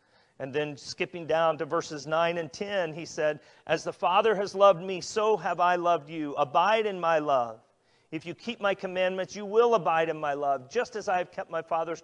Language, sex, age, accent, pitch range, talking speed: English, male, 40-59, American, 160-215 Hz, 220 wpm